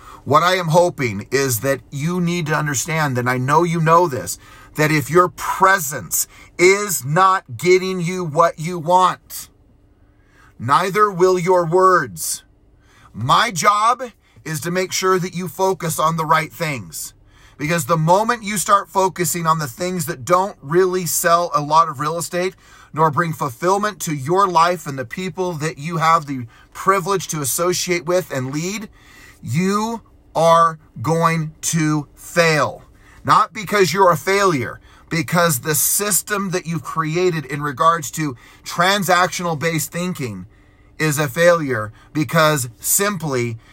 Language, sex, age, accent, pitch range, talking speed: English, male, 40-59, American, 140-185 Hz, 145 wpm